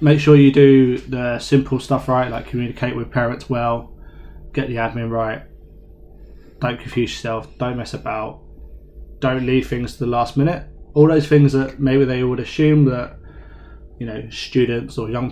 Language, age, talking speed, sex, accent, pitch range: English, 20-39, 170 wpm, male, British, 115-135 Hz